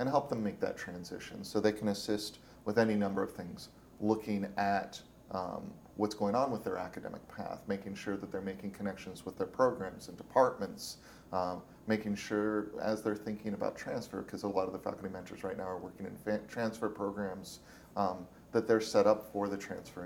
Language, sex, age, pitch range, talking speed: English, male, 30-49, 95-110 Hz, 195 wpm